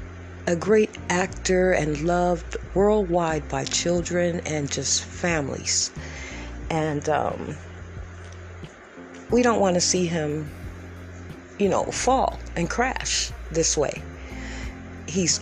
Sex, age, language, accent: female, 40-59, English, American